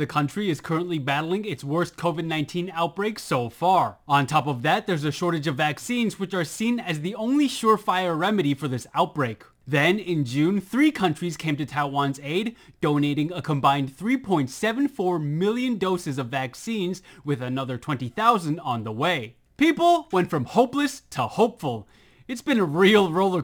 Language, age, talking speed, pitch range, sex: English, 20-39, 165 wpm, 145-220 Hz, male